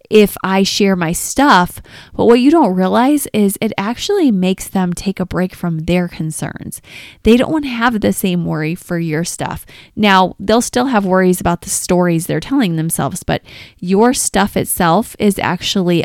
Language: English